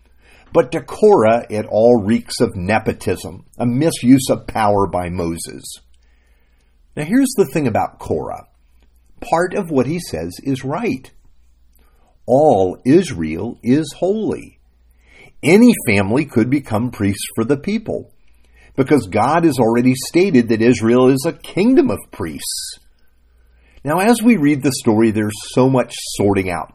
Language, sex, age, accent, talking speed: English, male, 50-69, American, 140 wpm